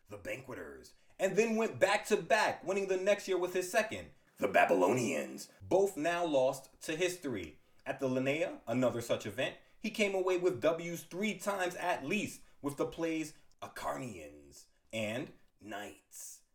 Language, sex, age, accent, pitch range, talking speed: English, male, 30-49, American, 150-185 Hz, 155 wpm